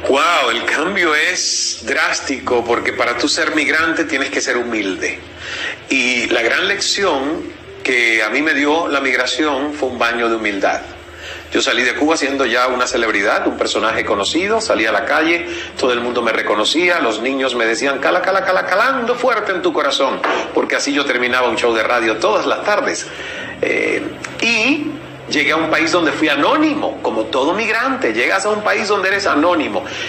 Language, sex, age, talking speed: Spanish, male, 40-59, 185 wpm